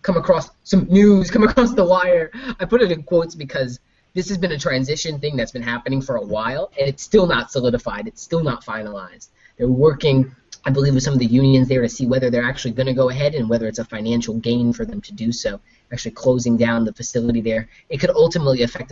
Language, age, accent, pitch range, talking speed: English, 20-39, American, 120-175 Hz, 240 wpm